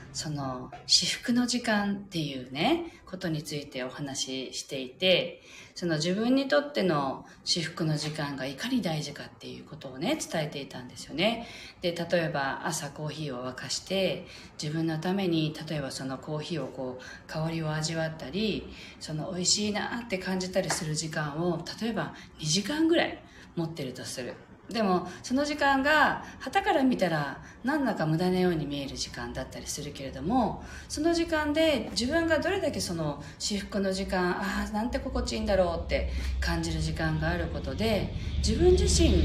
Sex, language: female, Japanese